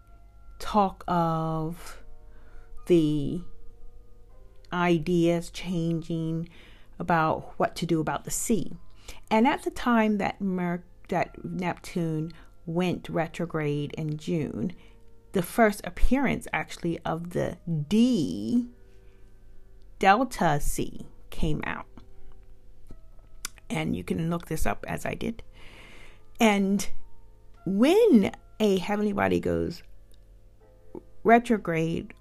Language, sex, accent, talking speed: English, female, American, 95 wpm